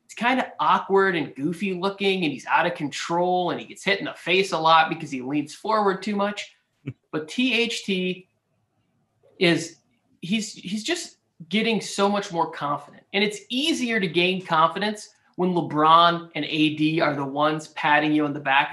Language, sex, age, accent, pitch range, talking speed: English, male, 30-49, American, 155-195 Hz, 175 wpm